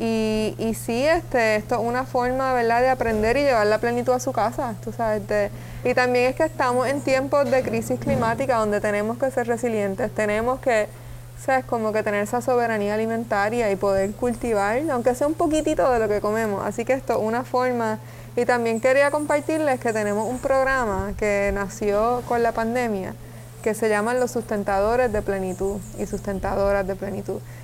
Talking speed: 185 wpm